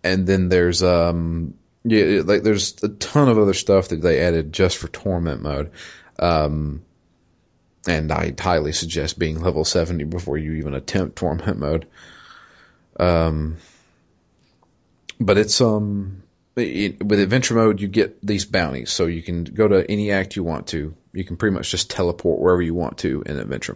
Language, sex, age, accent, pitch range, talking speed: English, male, 30-49, American, 85-105 Hz, 165 wpm